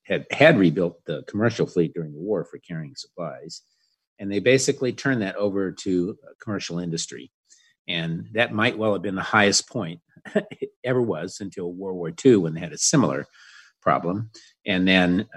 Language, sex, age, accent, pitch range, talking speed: English, male, 50-69, American, 85-105 Hz, 175 wpm